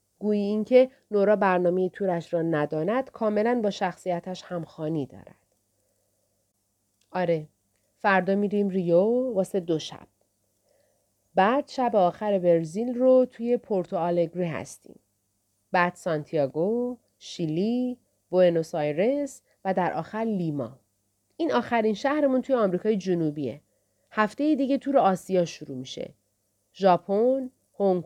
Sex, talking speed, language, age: female, 105 wpm, Persian, 30-49